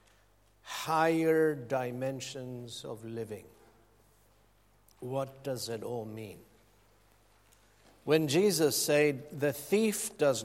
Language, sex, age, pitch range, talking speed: English, male, 60-79, 115-150 Hz, 85 wpm